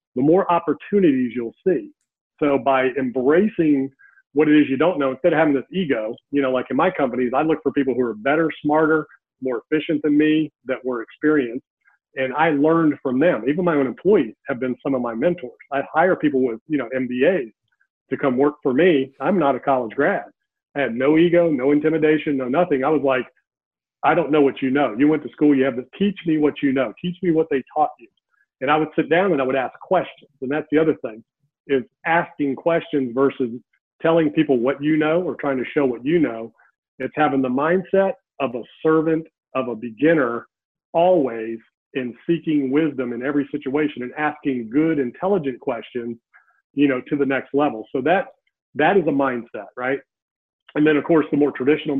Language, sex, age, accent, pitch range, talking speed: English, male, 40-59, American, 130-160 Hz, 210 wpm